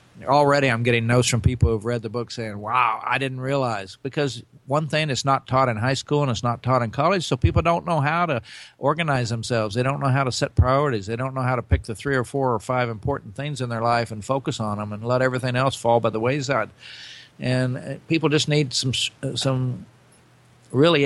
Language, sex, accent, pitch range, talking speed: English, male, American, 120-140 Hz, 235 wpm